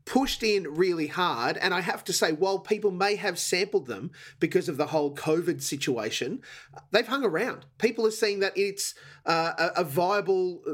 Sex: male